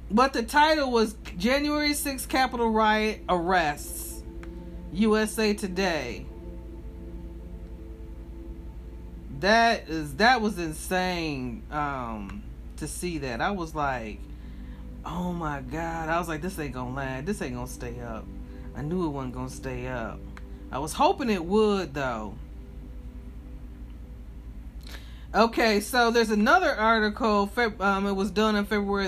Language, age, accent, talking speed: English, 40-59, American, 130 wpm